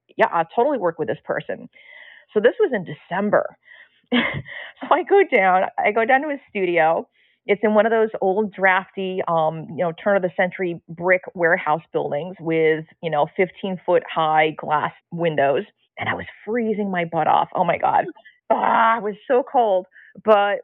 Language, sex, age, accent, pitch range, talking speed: English, female, 30-49, American, 165-220 Hz, 185 wpm